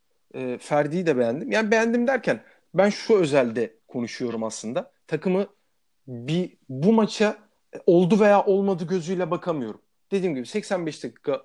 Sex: male